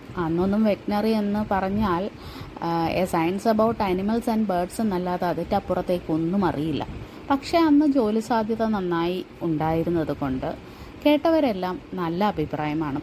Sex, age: female, 30-49